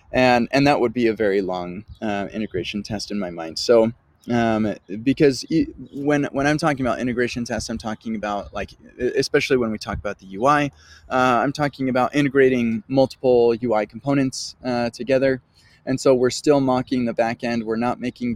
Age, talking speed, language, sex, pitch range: 20-39, 185 wpm, English, male, 110-130 Hz